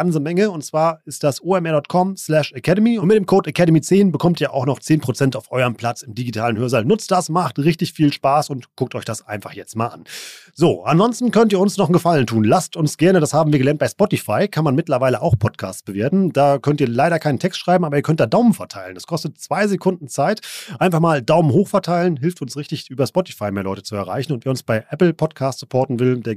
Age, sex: 30-49, male